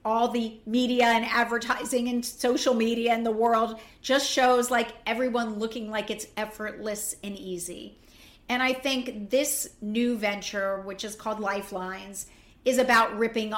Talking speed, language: 150 wpm, English